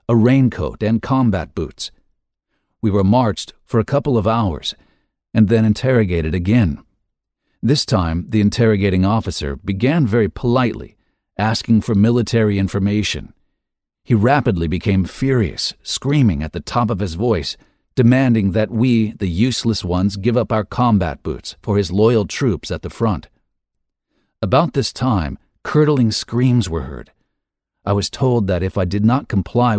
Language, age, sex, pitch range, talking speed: English, 50-69, male, 95-115 Hz, 150 wpm